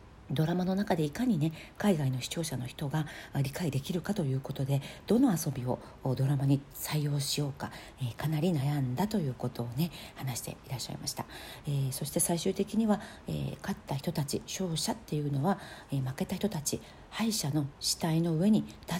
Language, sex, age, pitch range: Japanese, female, 40-59, 135-175 Hz